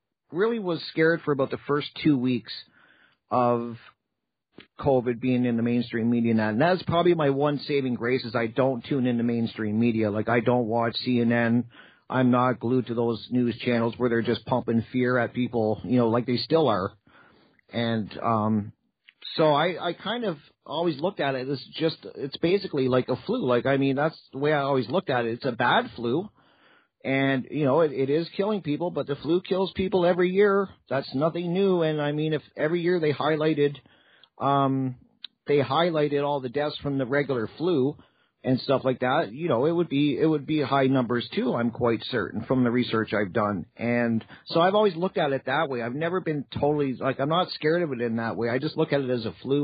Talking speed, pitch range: 215 wpm, 120-150 Hz